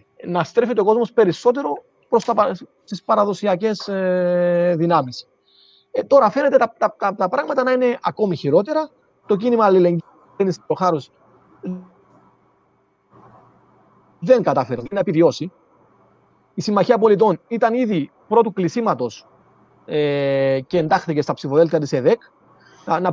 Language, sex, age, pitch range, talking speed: Greek, male, 30-49, 165-220 Hz, 120 wpm